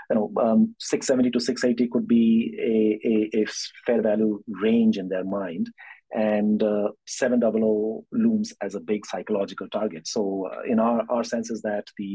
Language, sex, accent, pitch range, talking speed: English, male, Indian, 100-120 Hz, 175 wpm